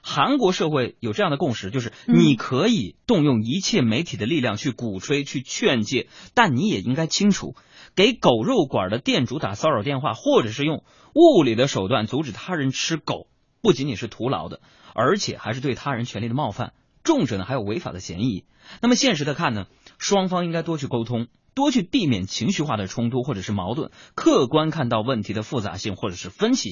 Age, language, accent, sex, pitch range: 20-39, Chinese, native, male, 110-160 Hz